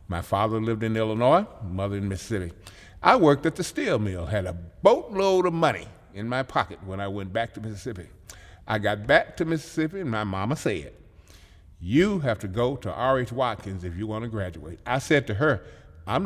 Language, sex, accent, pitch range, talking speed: English, male, American, 100-130 Hz, 195 wpm